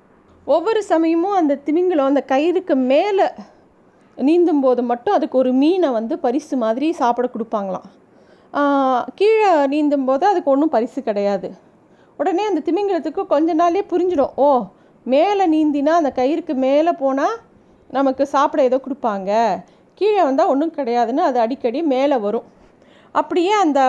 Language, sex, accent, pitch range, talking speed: Tamil, female, native, 255-330 Hz, 130 wpm